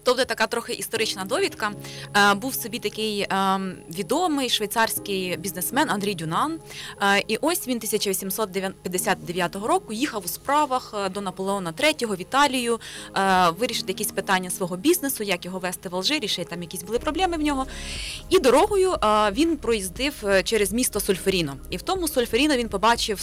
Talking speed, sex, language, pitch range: 145 wpm, female, Ukrainian, 185-240 Hz